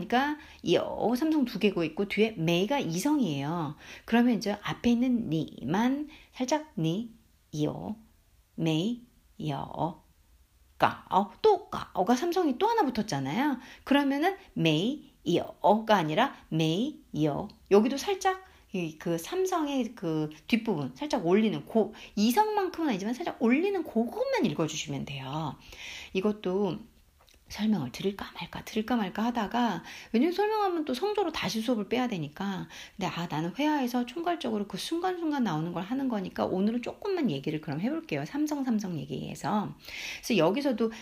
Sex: female